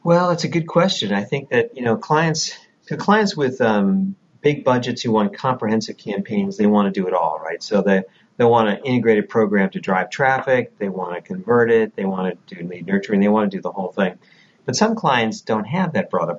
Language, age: English, 40-59